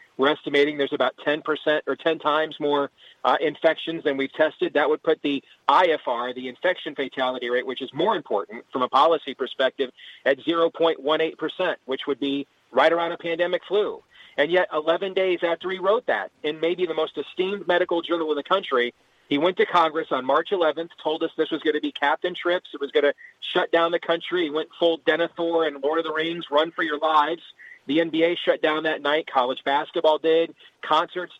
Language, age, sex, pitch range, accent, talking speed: English, 40-59, male, 155-180 Hz, American, 205 wpm